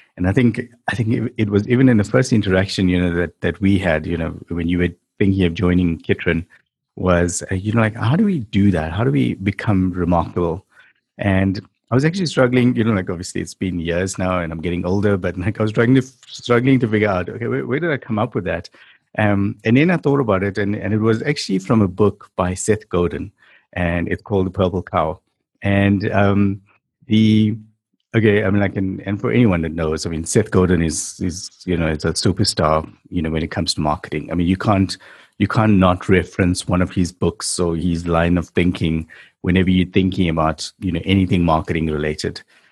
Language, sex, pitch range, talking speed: English, male, 90-110 Hz, 225 wpm